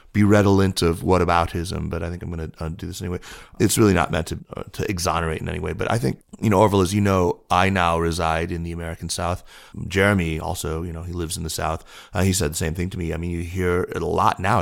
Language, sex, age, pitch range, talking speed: English, male, 30-49, 85-100 Hz, 270 wpm